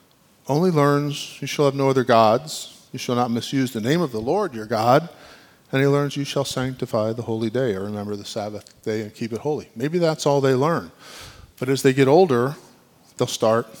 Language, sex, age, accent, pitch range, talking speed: English, male, 40-59, American, 110-135 Hz, 215 wpm